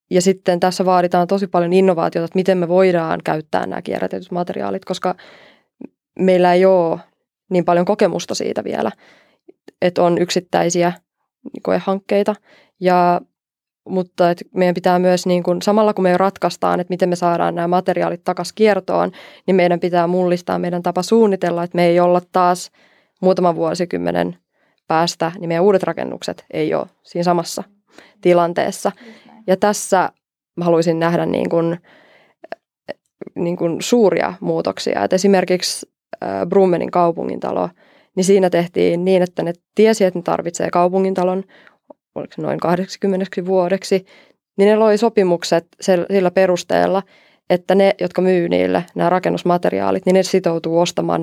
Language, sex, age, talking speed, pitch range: Finnish, female, 20-39, 135 wpm, 175-190 Hz